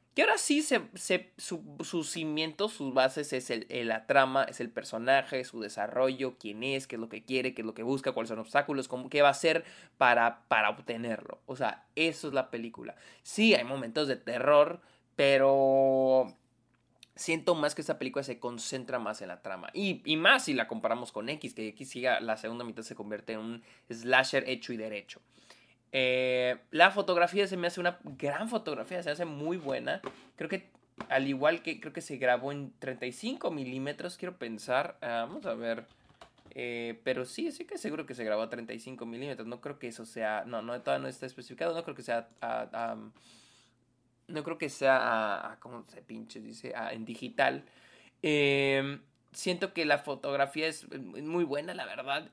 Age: 20-39